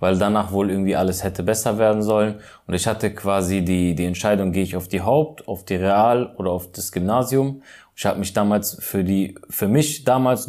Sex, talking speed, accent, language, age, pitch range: male, 210 wpm, German, German, 20-39, 100-140 Hz